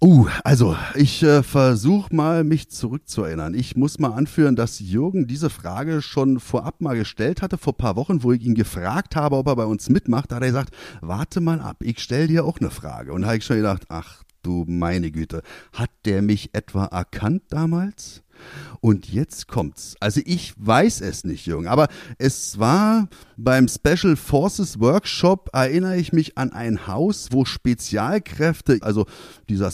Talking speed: 185 wpm